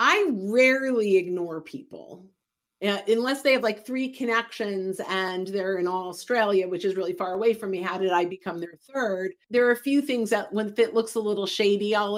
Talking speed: 205 wpm